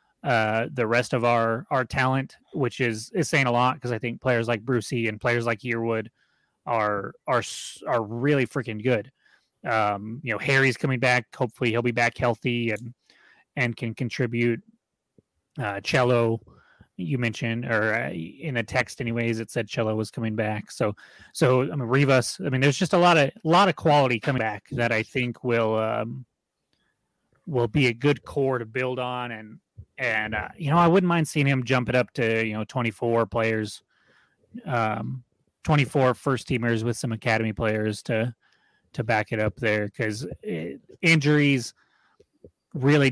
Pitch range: 115-140 Hz